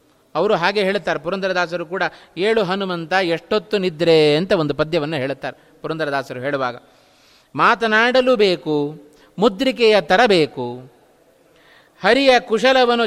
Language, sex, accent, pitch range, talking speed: Kannada, male, native, 185-260 Hz, 95 wpm